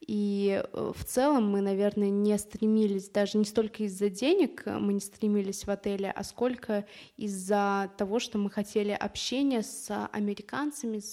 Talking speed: 145 wpm